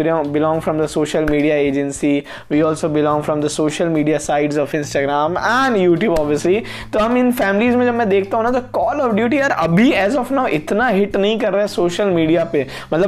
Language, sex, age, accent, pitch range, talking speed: Hindi, male, 20-39, native, 165-220 Hz, 115 wpm